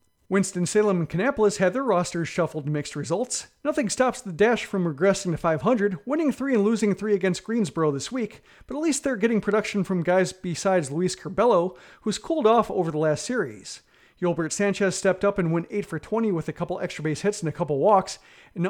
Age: 40-59